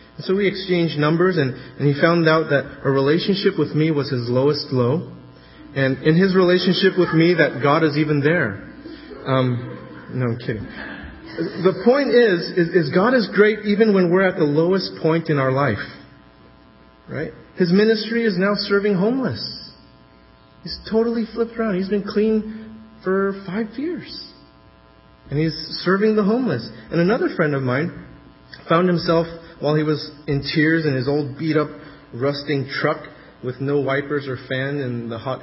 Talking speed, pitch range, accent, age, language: 170 wpm, 130-190 Hz, American, 30-49, English